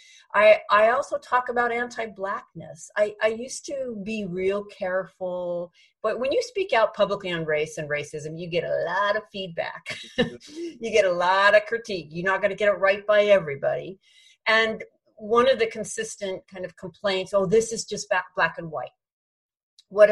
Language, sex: English, female